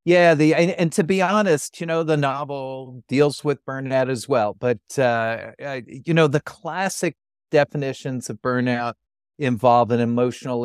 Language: English